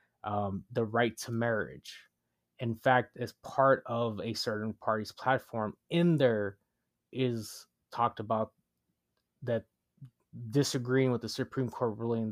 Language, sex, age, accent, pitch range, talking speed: English, male, 20-39, American, 105-120 Hz, 125 wpm